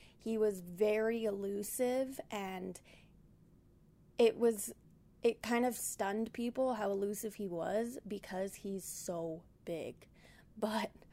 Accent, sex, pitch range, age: American, female, 200-230 Hz, 20-39